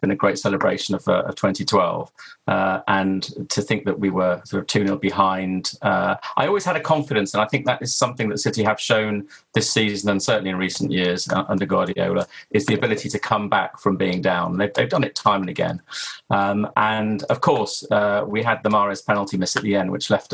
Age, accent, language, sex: 30-49, British, English, male